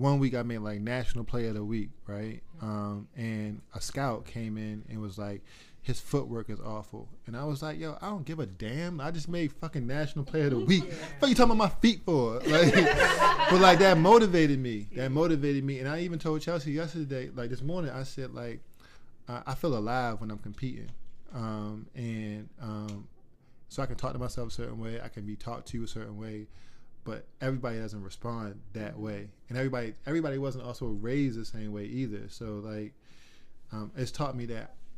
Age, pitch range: 20-39, 105-135 Hz